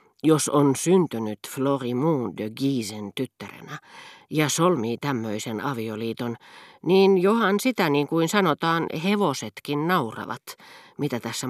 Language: Finnish